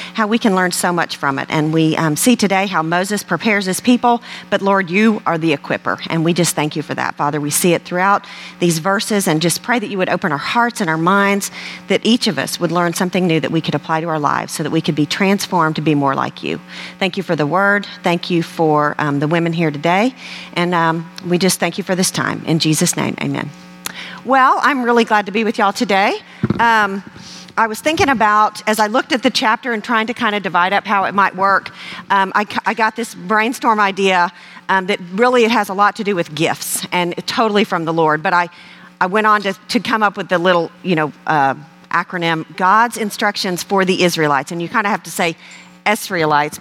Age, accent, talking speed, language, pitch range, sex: 40-59, American, 235 wpm, English, 165-215 Hz, female